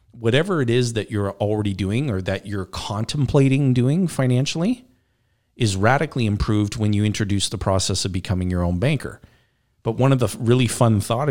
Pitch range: 95-120 Hz